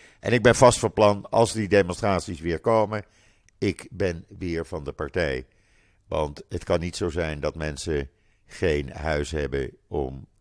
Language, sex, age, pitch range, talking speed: Dutch, male, 50-69, 85-110 Hz, 165 wpm